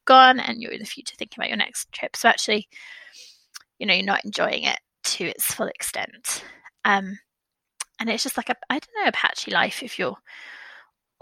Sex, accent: female, British